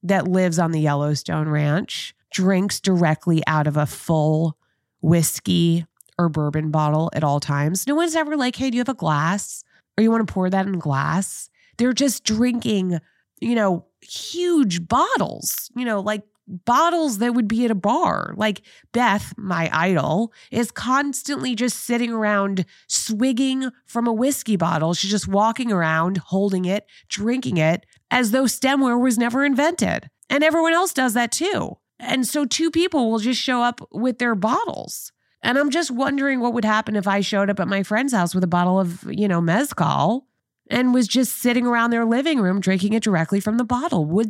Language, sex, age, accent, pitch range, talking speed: English, female, 20-39, American, 170-245 Hz, 185 wpm